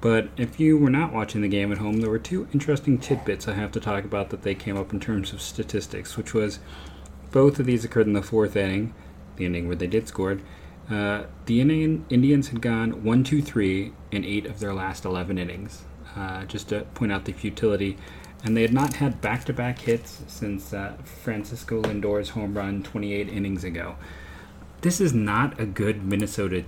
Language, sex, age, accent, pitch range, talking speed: English, male, 30-49, American, 95-115 Hz, 190 wpm